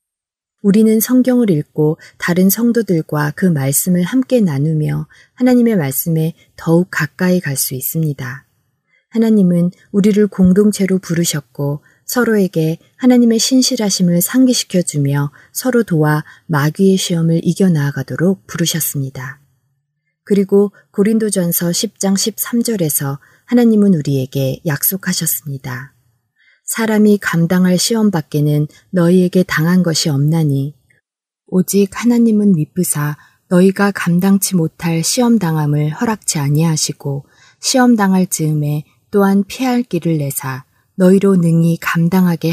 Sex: female